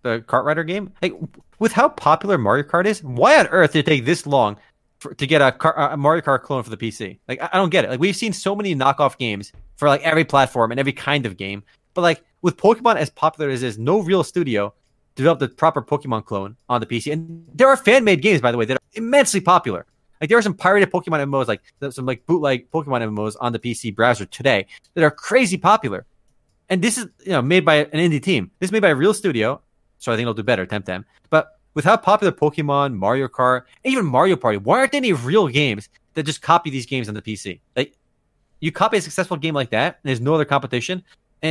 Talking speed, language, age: 245 wpm, English, 30-49